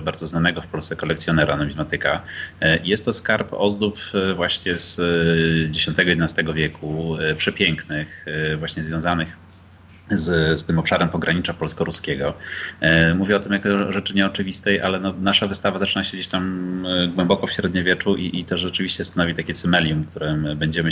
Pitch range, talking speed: 80-90 Hz, 145 wpm